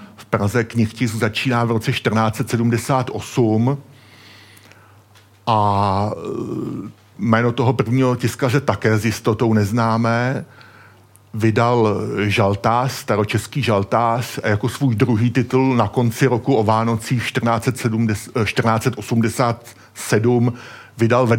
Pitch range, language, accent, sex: 110-130 Hz, Czech, native, male